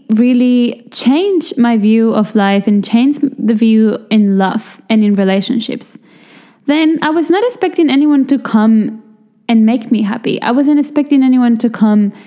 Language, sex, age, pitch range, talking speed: English, female, 10-29, 220-270 Hz, 160 wpm